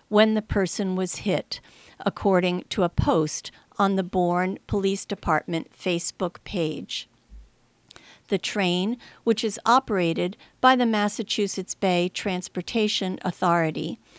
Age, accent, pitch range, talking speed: 50-69, American, 175-220 Hz, 115 wpm